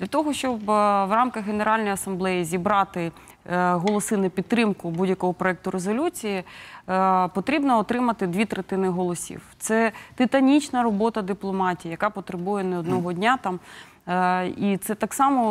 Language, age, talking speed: Ukrainian, 20-39, 130 wpm